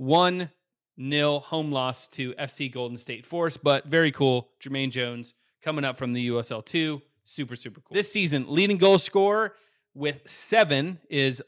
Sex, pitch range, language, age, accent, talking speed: male, 130-170 Hz, English, 30-49, American, 155 wpm